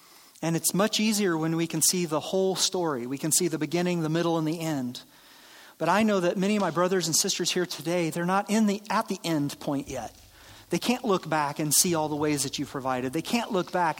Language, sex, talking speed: English, male, 250 wpm